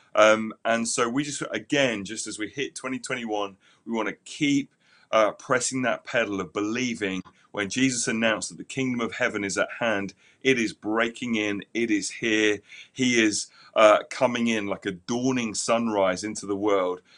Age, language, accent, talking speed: 30-49, English, British, 180 wpm